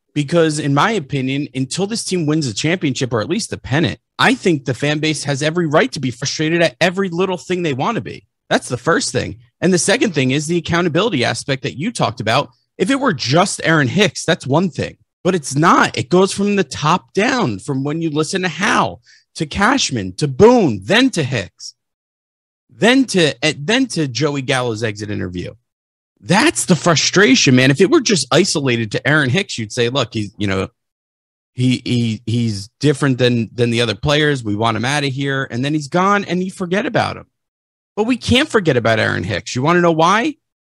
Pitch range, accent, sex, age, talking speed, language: 130-190 Hz, American, male, 30-49, 205 wpm, English